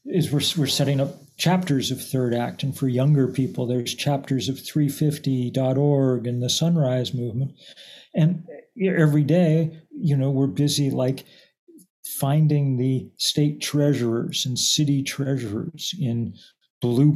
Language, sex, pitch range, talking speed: English, male, 130-160 Hz, 145 wpm